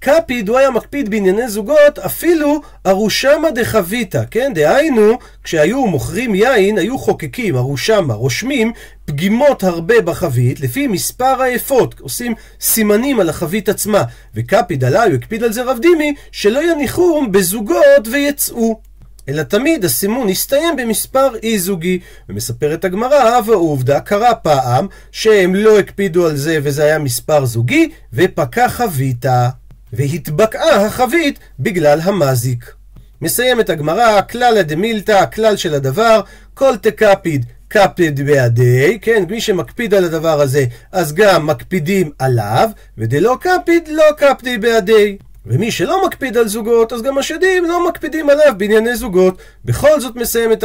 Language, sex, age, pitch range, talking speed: Hebrew, male, 40-59, 150-245 Hz, 130 wpm